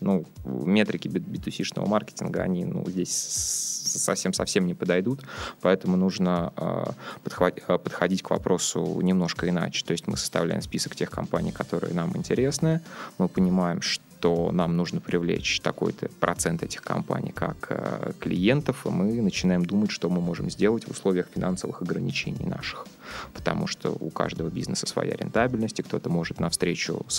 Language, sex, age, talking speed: Russian, male, 20-39, 150 wpm